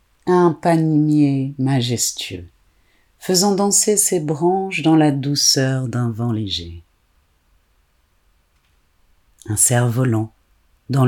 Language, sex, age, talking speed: French, female, 50-69, 85 wpm